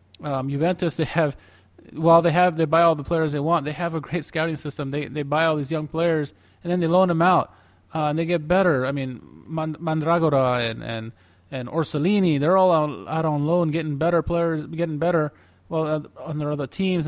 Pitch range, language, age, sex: 125-160 Hz, English, 20-39, male